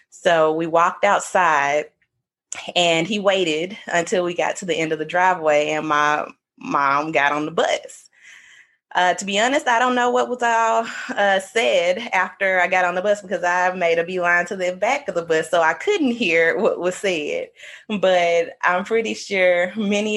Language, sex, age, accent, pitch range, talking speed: English, female, 20-39, American, 155-185 Hz, 190 wpm